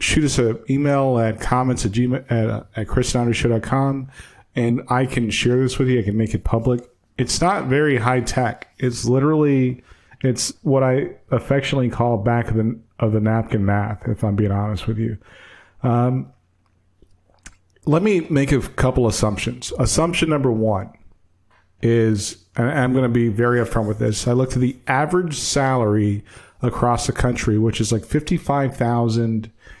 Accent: American